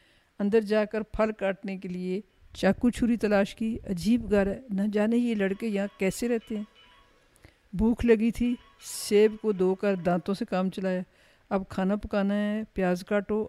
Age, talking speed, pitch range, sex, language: 50-69, 175 wpm, 185-215 Hz, female, Urdu